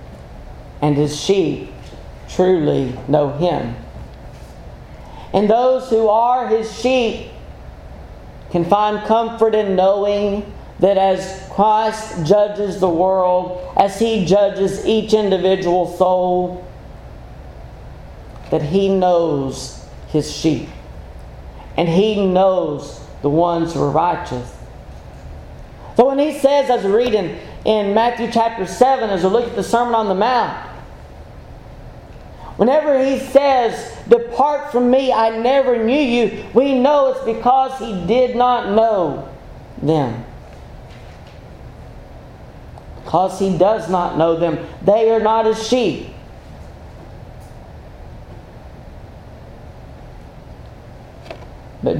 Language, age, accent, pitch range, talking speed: English, 40-59, American, 160-225 Hz, 105 wpm